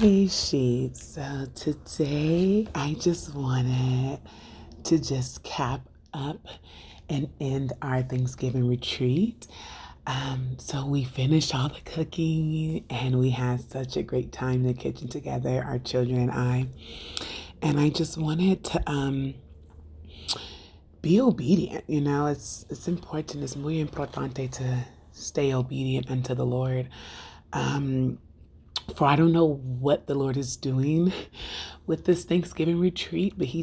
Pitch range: 125-155 Hz